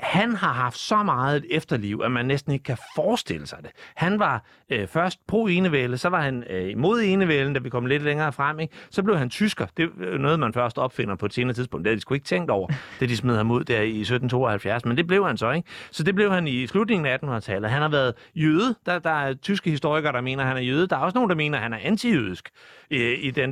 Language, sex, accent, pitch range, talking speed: Danish, male, native, 120-175 Hz, 265 wpm